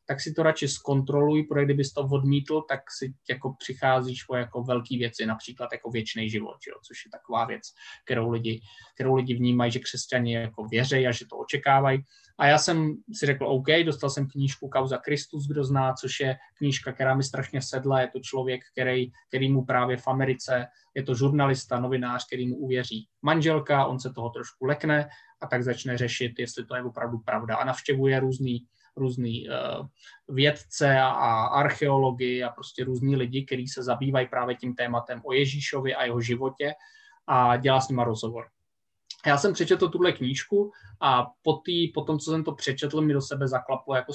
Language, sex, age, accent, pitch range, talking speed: Czech, male, 20-39, native, 125-145 Hz, 185 wpm